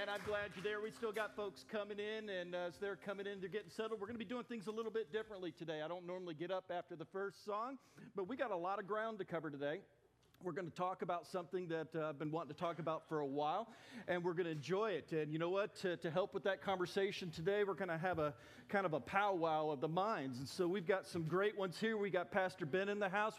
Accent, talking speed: American, 285 wpm